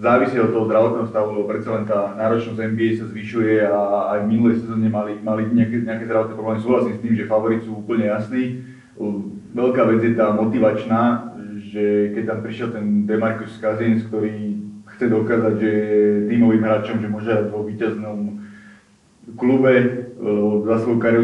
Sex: male